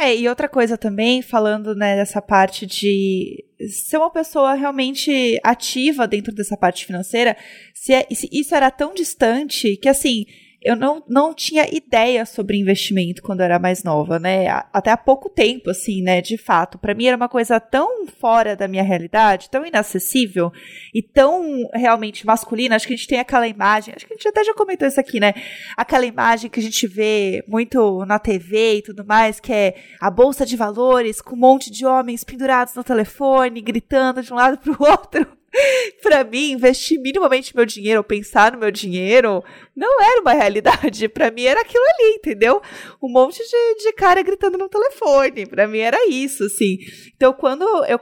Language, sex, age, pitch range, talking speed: Portuguese, female, 20-39, 210-275 Hz, 185 wpm